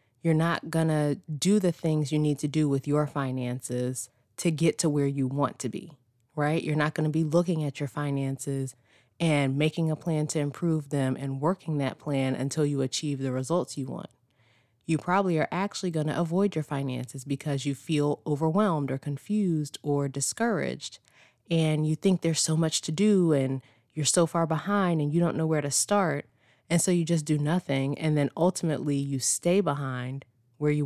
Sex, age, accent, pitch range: female, 20-39, American, 135-165 Hz